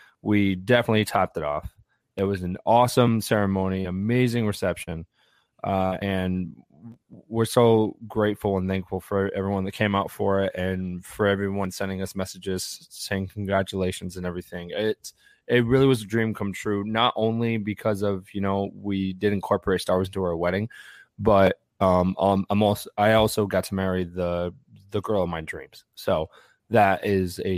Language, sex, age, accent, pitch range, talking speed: English, male, 20-39, American, 95-110 Hz, 170 wpm